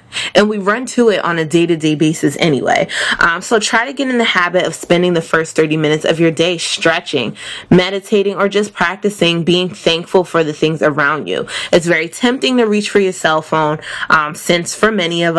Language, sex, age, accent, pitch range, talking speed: English, female, 20-39, American, 160-210 Hz, 205 wpm